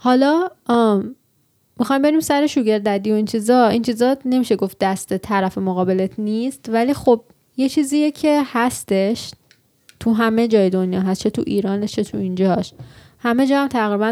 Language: Persian